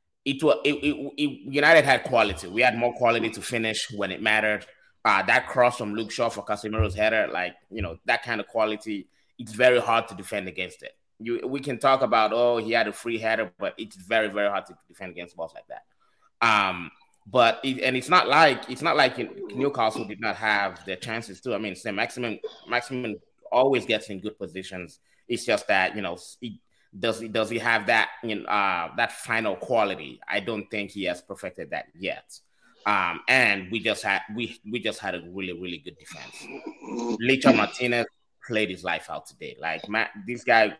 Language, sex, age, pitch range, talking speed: English, male, 20-39, 100-125 Hz, 205 wpm